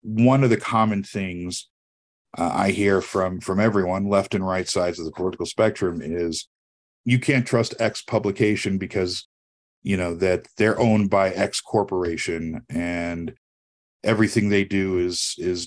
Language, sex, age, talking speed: English, male, 40-59, 155 wpm